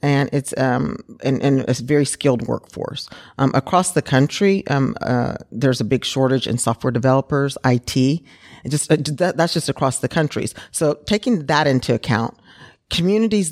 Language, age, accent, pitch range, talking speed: English, 40-59, American, 120-145 Hz, 170 wpm